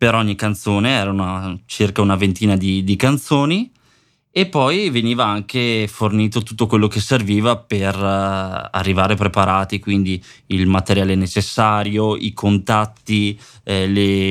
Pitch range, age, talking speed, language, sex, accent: 95-115 Hz, 20-39, 125 wpm, Italian, male, native